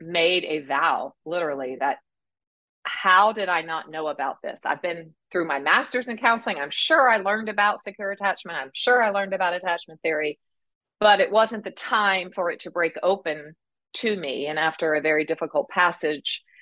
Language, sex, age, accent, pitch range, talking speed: English, female, 40-59, American, 160-210 Hz, 185 wpm